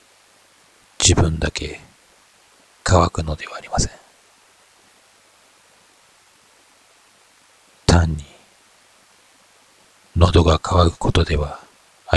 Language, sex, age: Japanese, male, 40-59